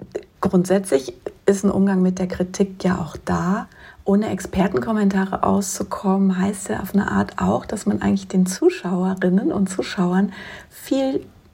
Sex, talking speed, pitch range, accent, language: female, 140 wpm, 175-190 Hz, German, German